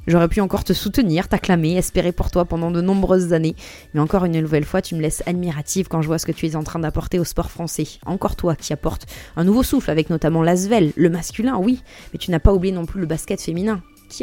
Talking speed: 250 wpm